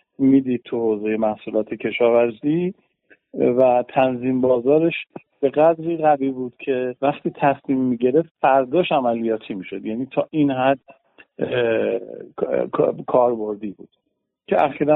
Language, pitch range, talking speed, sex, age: Persian, 120-145 Hz, 110 wpm, male, 50-69